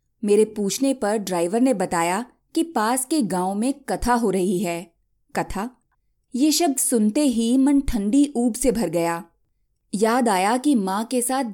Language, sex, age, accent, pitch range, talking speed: Hindi, female, 20-39, native, 190-260 Hz, 165 wpm